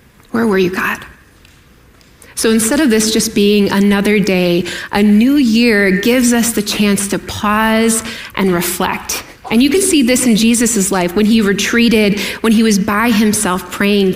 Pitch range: 195-245 Hz